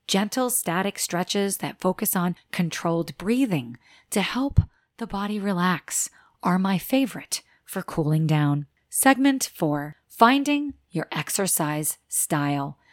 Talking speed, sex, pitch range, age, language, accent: 115 wpm, female, 160-235 Hz, 30-49, English, American